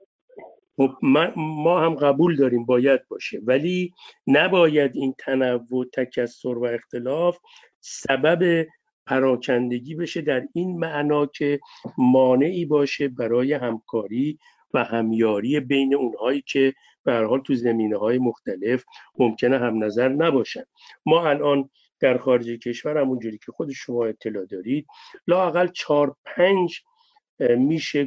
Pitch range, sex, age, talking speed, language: 125-165 Hz, male, 50-69, 115 wpm, Persian